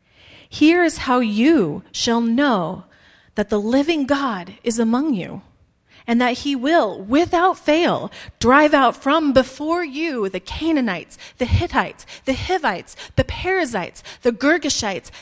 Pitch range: 215-280 Hz